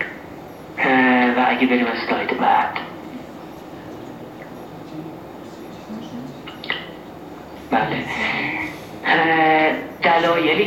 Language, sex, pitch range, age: Persian, male, 120-140 Hz, 40-59